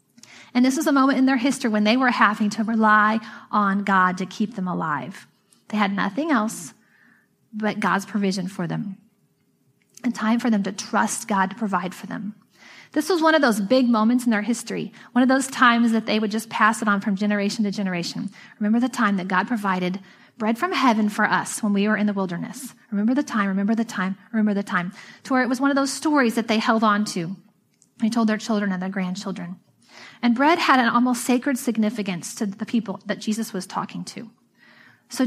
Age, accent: 30-49, American